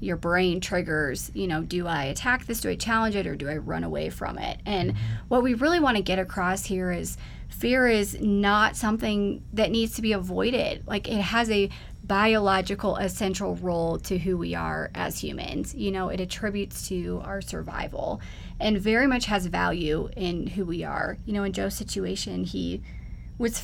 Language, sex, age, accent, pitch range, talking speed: English, female, 30-49, American, 180-220 Hz, 190 wpm